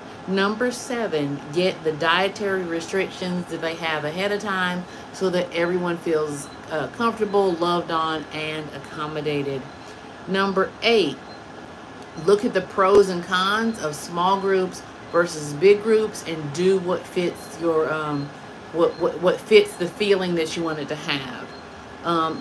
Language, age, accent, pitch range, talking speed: English, 50-69, American, 155-195 Hz, 145 wpm